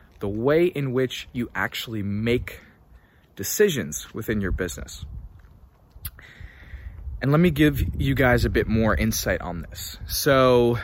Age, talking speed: 20-39, 135 wpm